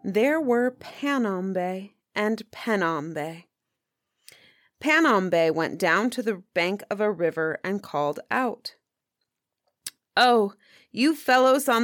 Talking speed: 105 wpm